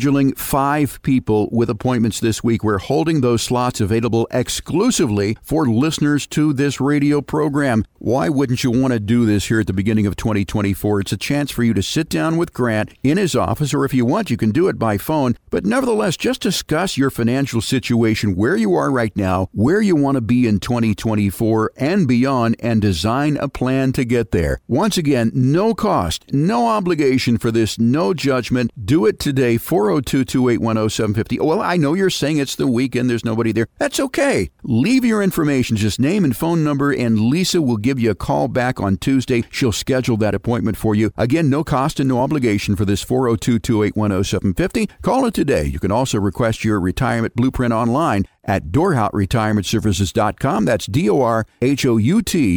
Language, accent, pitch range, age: English, American, 110-140 Hz, 50-69